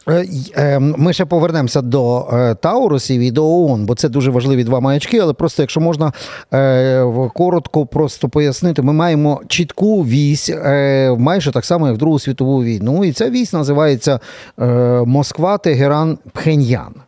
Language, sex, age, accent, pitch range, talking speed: Ukrainian, male, 40-59, native, 125-155 Hz, 130 wpm